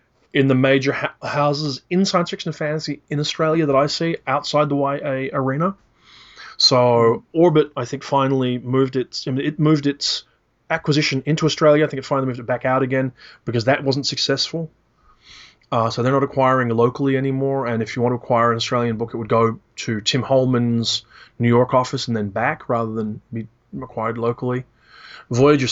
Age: 20-39